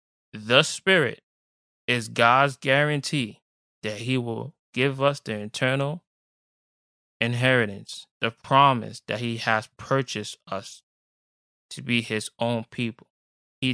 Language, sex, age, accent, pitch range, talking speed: English, male, 20-39, American, 115-140 Hz, 115 wpm